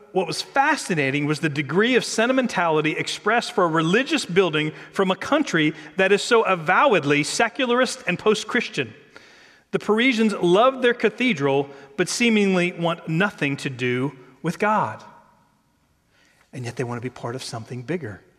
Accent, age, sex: American, 40-59, male